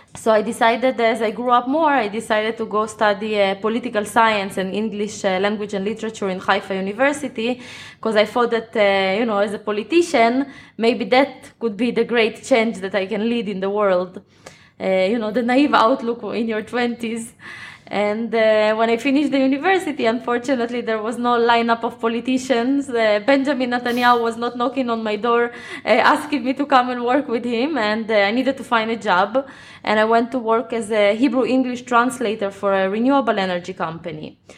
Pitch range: 210-255 Hz